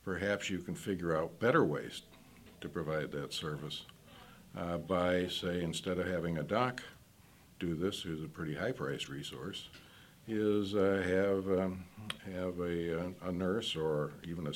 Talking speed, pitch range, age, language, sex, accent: 155 wpm, 80-100 Hz, 60-79, English, male, American